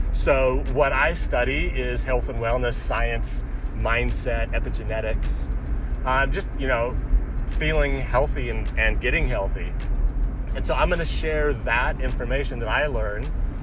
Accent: American